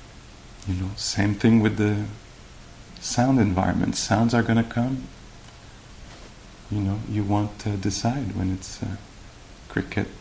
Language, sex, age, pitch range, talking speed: English, male, 40-59, 95-115 Hz, 135 wpm